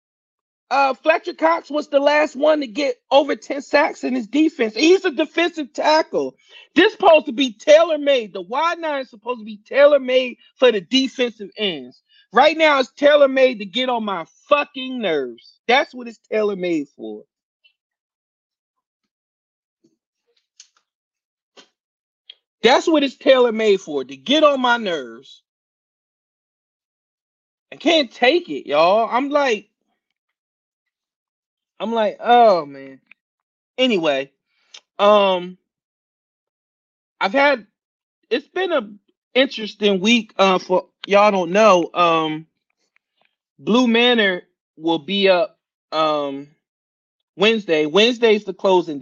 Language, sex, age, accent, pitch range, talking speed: English, male, 40-59, American, 185-290 Hz, 120 wpm